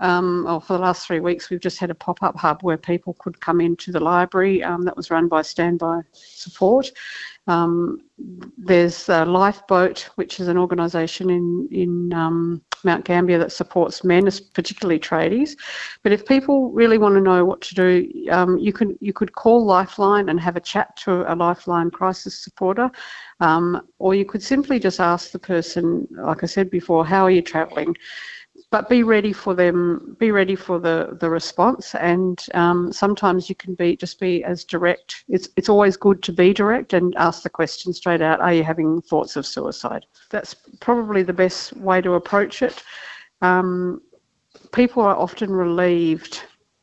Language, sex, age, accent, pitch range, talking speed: English, female, 50-69, Australian, 170-200 Hz, 175 wpm